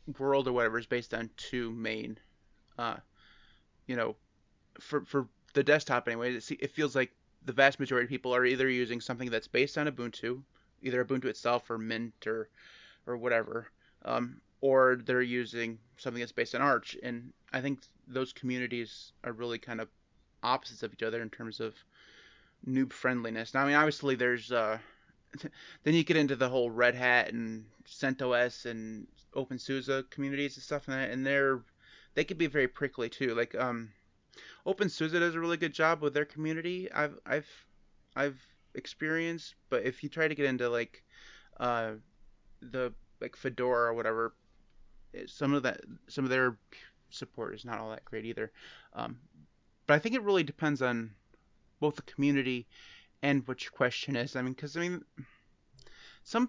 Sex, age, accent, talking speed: male, 30-49, American, 170 wpm